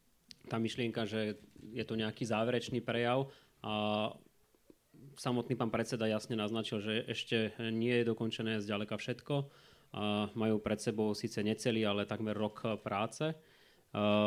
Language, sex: Slovak, male